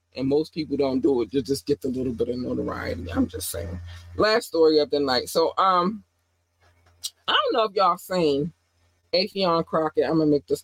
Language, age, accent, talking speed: English, 20-39, American, 205 wpm